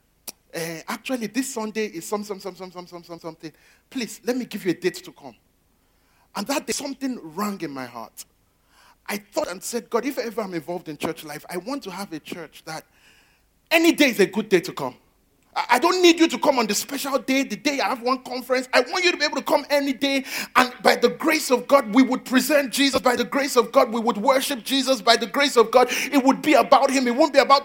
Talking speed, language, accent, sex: 250 wpm, English, Nigerian, male